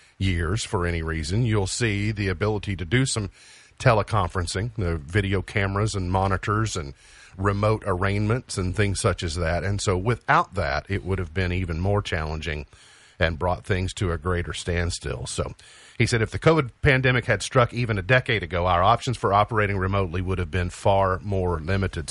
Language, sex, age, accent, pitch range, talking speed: English, male, 40-59, American, 95-120 Hz, 180 wpm